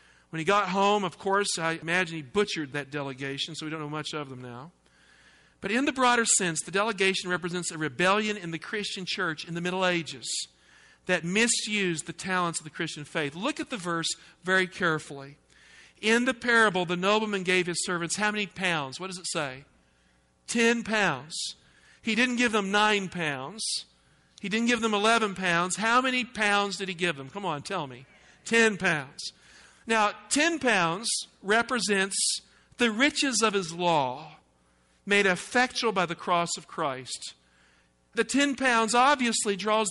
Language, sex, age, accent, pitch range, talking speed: English, male, 50-69, American, 170-225 Hz, 175 wpm